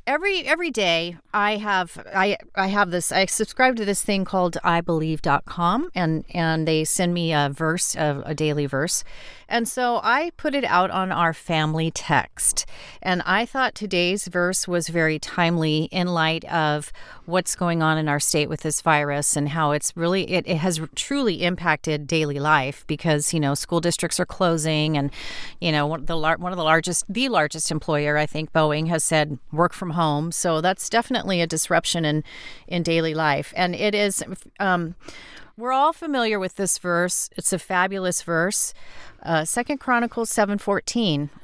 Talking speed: 175 wpm